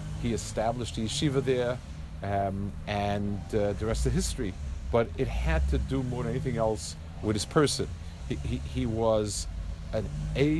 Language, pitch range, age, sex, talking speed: English, 85-115 Hz, 50-69, male, 170 wpm